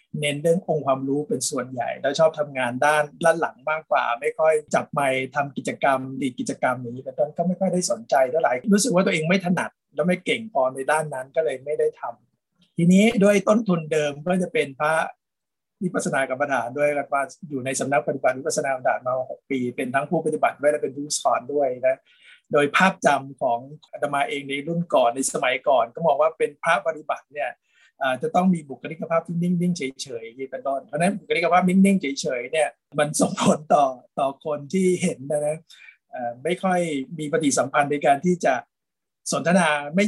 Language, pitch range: Thai, 140-180 Hz